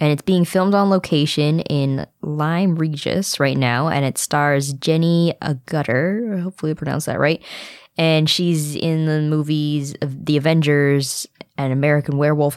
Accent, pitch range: American, 140-170 Hz